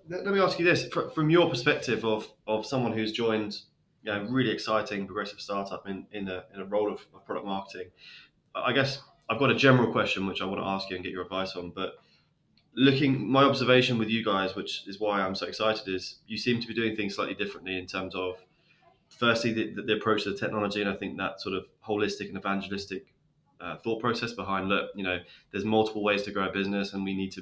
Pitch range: 95-115 Hz